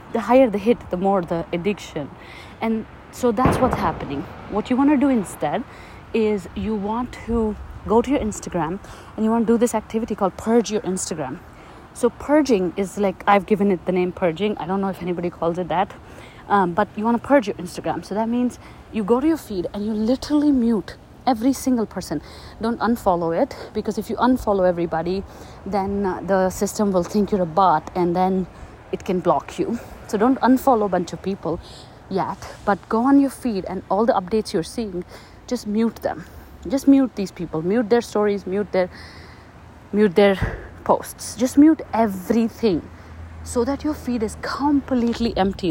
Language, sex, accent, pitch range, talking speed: English, female, Indian, 185-235 Hz, 190 wpm